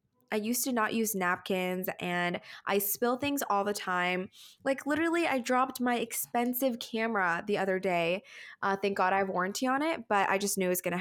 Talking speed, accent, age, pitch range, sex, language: 215 wpm, American, 10-29, 185-240 Hz, female, English